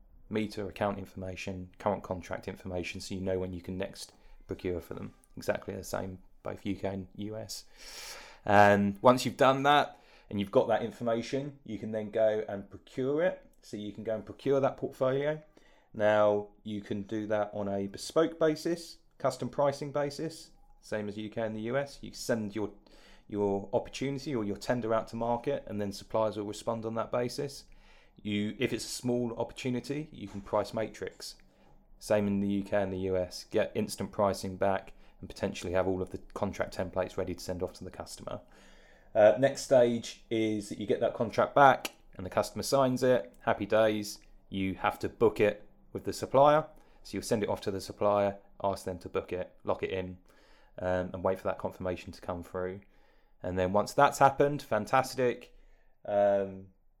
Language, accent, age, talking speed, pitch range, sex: English, British, 30-49, 185 wpm, 95-125 Hz, male